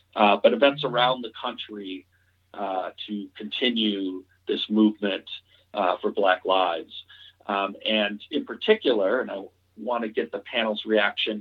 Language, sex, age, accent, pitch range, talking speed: English, male, 50-69, American, 100-120 Hz, 140 wpm